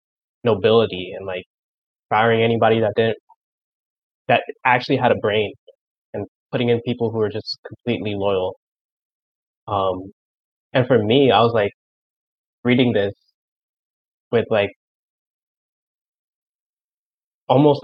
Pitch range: 110-130 Hz